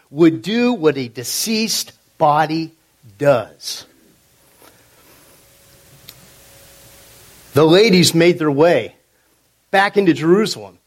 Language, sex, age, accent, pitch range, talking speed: English, male, 50-69, American, 145-205 Hz, 85 wpm